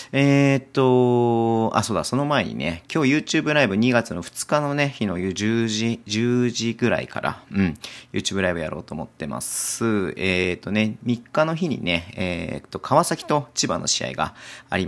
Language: Japanese